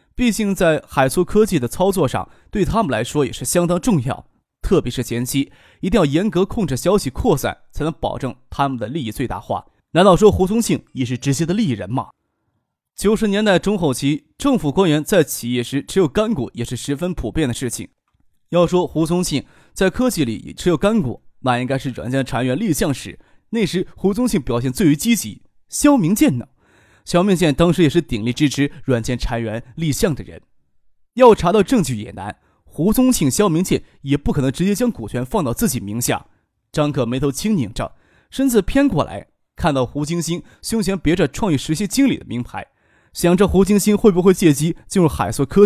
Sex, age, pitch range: male, 20-39, 125-195 Hz